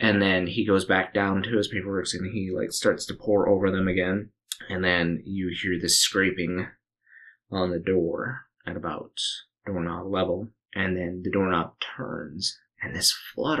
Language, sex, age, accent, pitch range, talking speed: English, male, 20-39, American, 90-105 Hz, 170 wpm